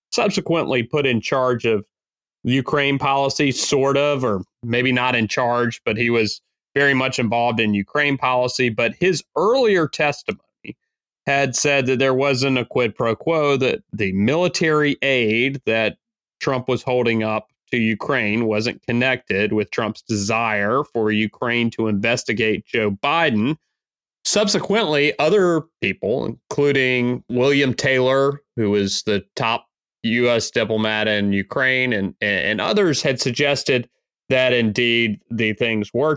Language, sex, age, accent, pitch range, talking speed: English, male, 30-49, American, 115-140 Hz, 135 wpm